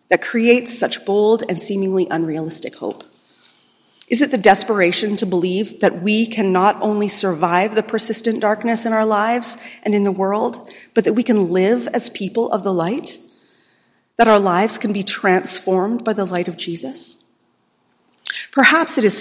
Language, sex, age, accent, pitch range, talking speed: English, female, 30-49, American, 195-235 Hz, 170 wpm